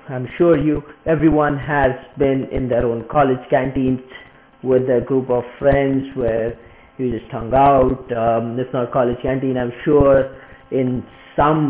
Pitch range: 125-145 Hz